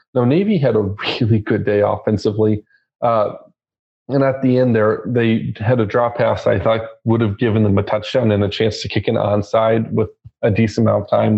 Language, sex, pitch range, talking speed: English, male, 105-120 Hz, 210 wpm